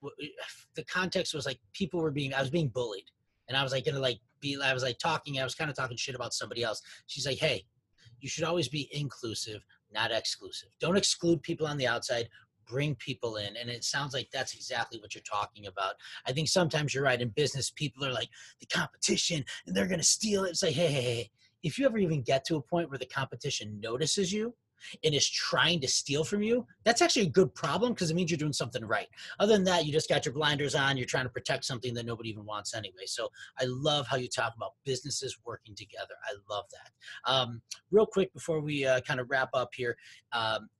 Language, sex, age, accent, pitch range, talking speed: English, male, 30-49, American, 125-170 Hz, 235 wpm